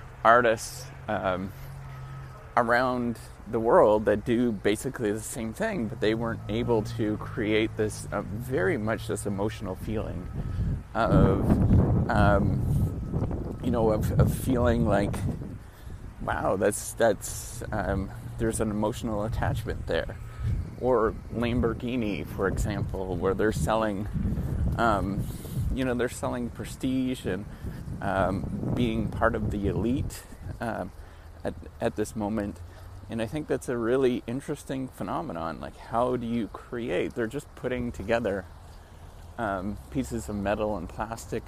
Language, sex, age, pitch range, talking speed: English, male, 30-49, 95-120 Hz, 130 wpm